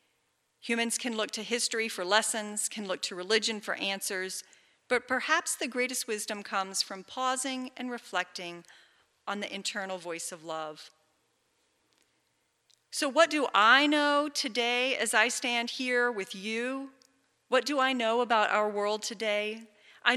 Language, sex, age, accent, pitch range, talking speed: English, female, 40-59, American, 195-250 Hz, 150 wpm